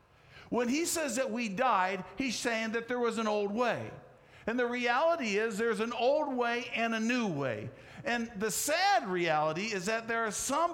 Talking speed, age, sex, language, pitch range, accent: 195 wpm, 50-69, male, English, 175-250 Hz, American